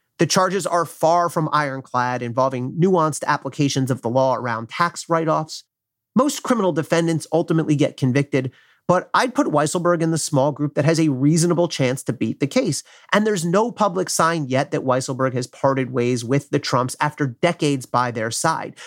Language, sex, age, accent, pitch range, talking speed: English, male, 30-49, American, 130-180 Hz, 180 wpm